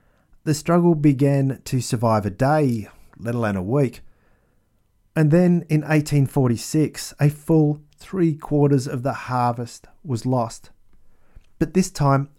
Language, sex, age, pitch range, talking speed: English, male, 40-59, 115-155 Hz, 130 wpm